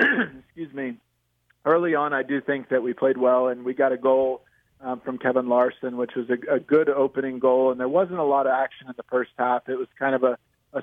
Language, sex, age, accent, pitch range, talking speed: English, male, 40-59, American, 130-150 Hz, 245 wpm